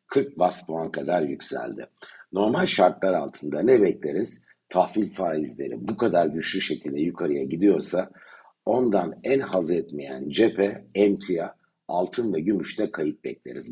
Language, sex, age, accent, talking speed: Turkish, male, 60-79, native, 125 wpm